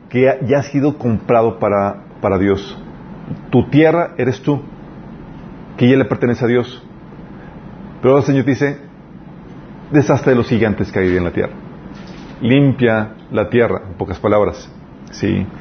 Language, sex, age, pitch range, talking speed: Spanish, male, 40-59, 115-145 Hz, 145 wpm